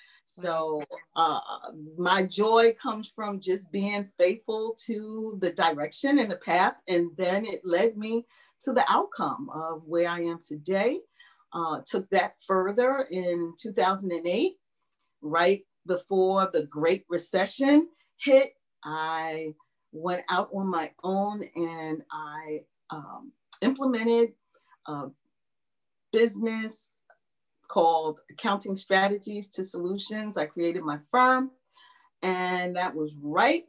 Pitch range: 165-220 Hz